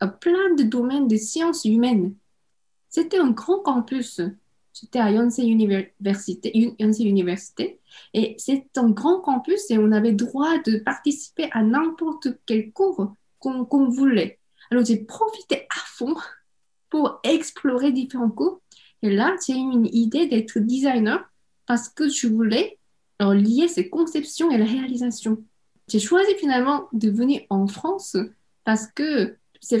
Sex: female